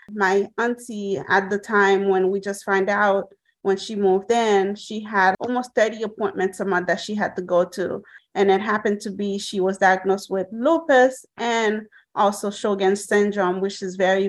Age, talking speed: 30-49, 185 wpm